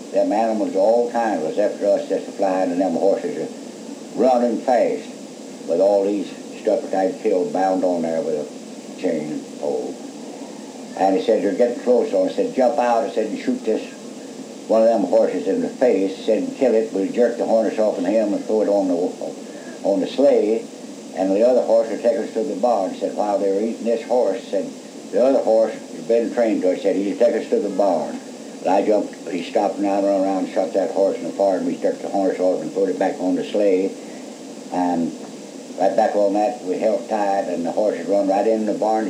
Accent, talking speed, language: American, 230 wpm, English